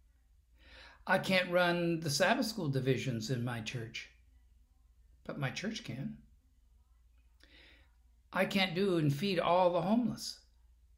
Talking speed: 120 wpm